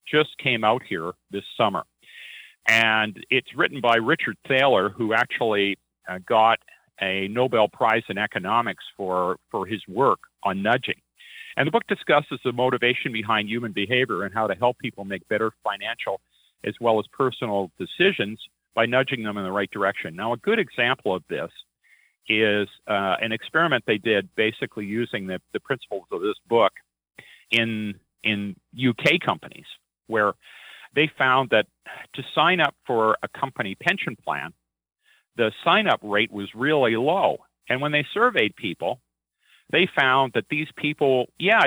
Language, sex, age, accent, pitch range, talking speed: English, male, 50-69, American, 100-130 Hz, 155 wpm